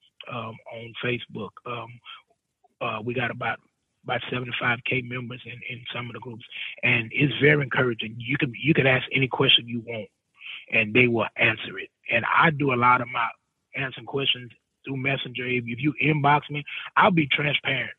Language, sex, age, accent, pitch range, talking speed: English, male, 30-49, American, 120-145 Hz, 175 wpm